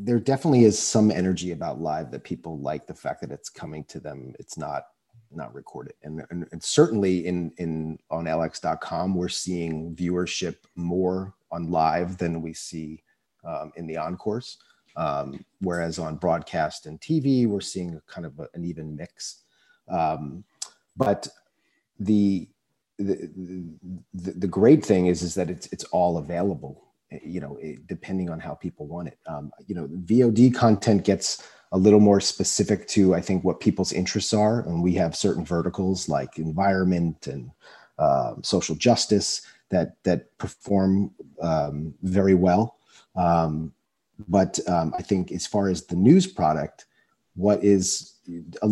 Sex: male